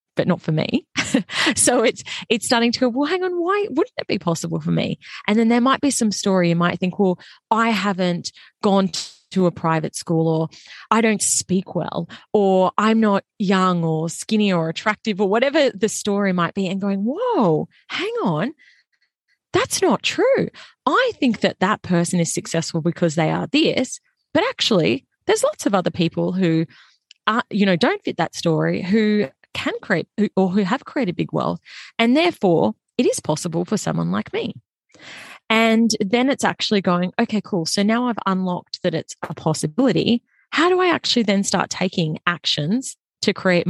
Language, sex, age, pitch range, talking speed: English, female, 20-39, 170-235 Hz, 185 wpm